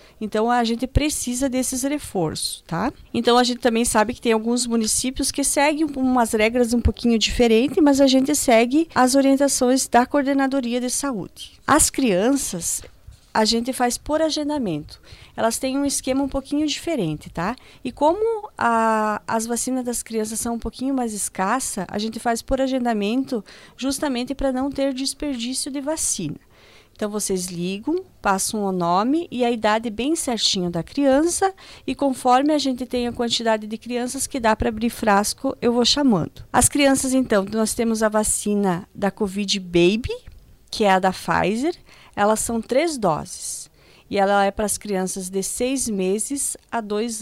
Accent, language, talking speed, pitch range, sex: Brazilian, Portuguese, 170 wpm, 215-270 Hz, female